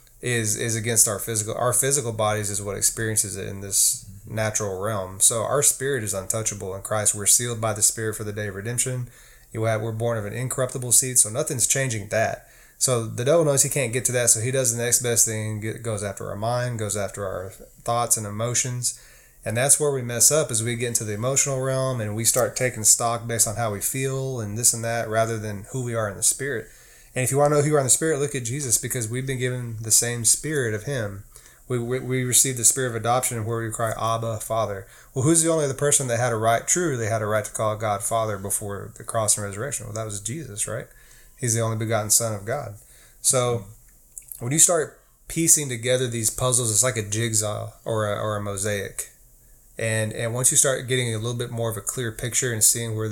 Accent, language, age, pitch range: American, English, 20-39, 110-125 Hz